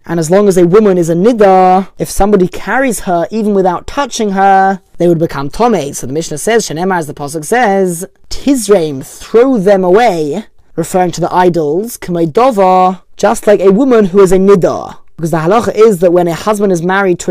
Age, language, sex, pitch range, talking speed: 20-39, English, male, 175-210 Hz, 200 wpm